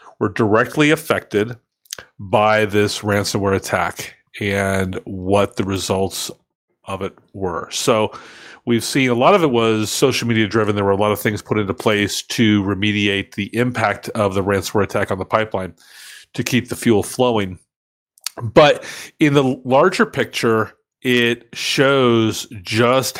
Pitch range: 105-130 Hz